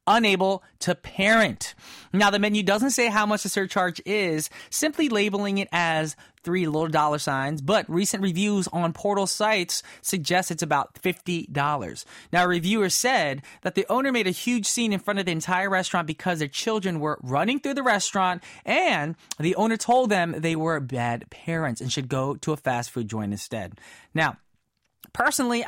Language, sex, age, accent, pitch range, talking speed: English, male, 20-39, American, 145-210 Hz, 180 wpm